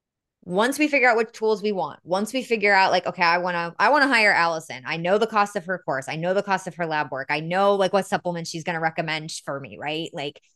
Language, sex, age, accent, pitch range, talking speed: English, female, 20-39, American, 155-190 Hz, 275 wpm